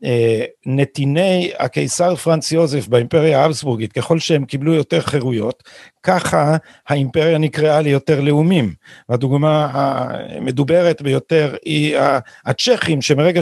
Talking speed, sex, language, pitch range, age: 105 wpm, male, Hebrew, 135-170 Hz, 50-69